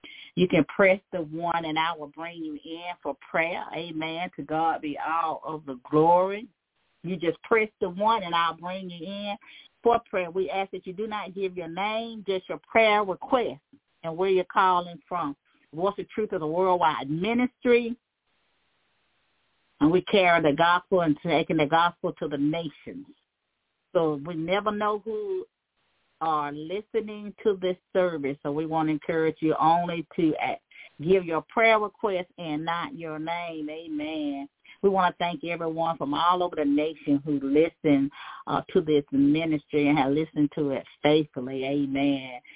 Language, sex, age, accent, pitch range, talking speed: English, female, 40-59, American, 155-190 Hz, 170 wpm